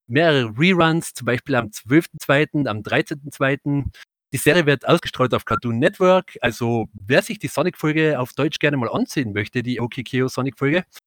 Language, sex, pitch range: German, male, 120-155 Hz